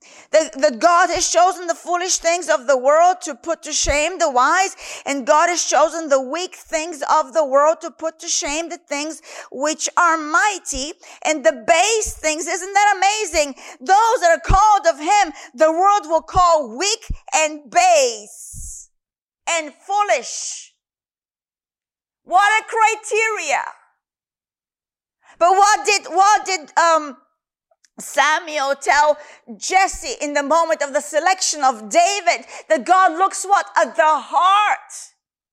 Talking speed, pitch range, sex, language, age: 140 wpm, 300-370 Hz, female, English, 50-69